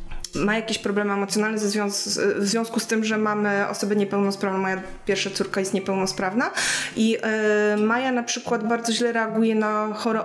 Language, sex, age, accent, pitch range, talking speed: Polish, female, 20-39, native, 200-225 Hz, 170 wpm